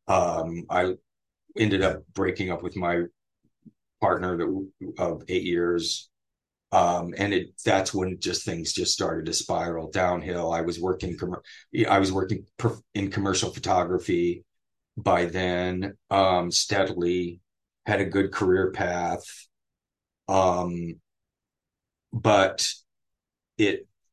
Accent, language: American, English